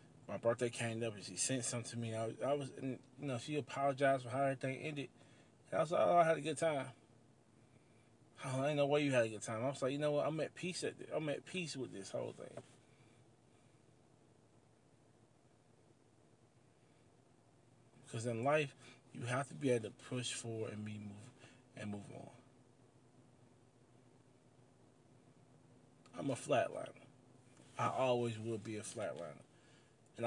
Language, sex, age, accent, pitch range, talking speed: English, male, 20-39, American, 115-135 Hz, 175 wpm